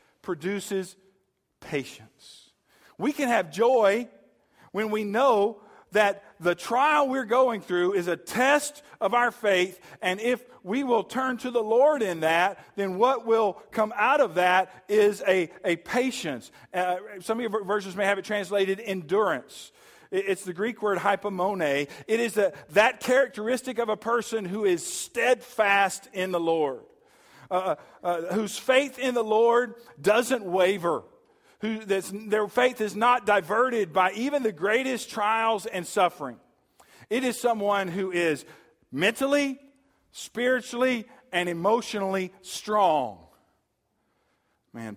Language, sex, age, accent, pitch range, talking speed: English, male, 50-69, American, 175-240 Hz, 135 wpm